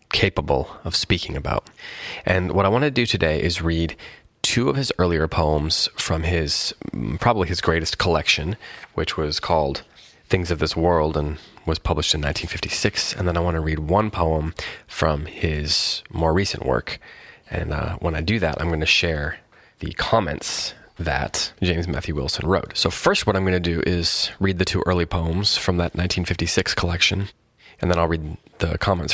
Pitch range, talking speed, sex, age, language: 80-100 Hz, 185 wpm, male, 30-49, English